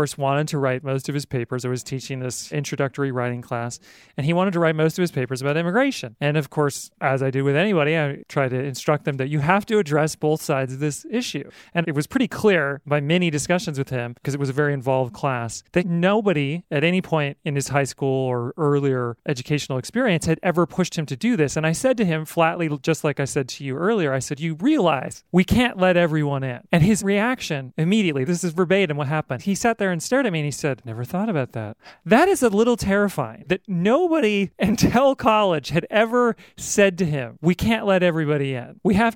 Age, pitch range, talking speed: 30-49, 140-185 Hz, 230 wpm